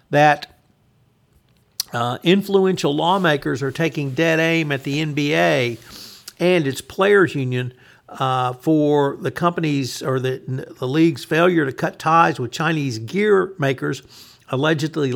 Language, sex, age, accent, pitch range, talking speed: English, male, 60-79, American, 125-155 Hz, 125 wpm